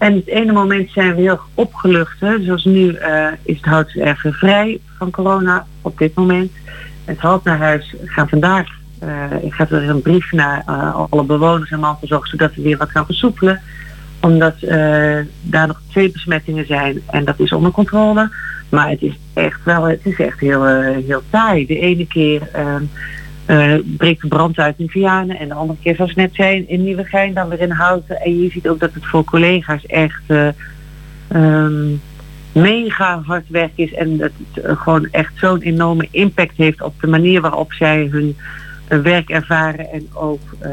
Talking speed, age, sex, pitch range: 185 wpm, 40-59, female, 150-185 Hz